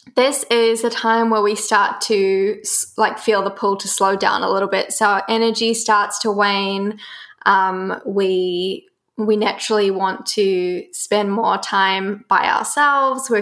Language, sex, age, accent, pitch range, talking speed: English, female, 10-29, Australian, 200-240 Hz, 155 wpm